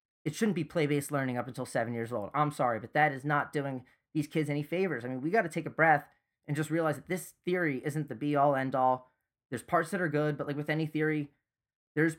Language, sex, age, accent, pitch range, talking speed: English, male, 20-39, American, 130-165 Hz, 255 wpm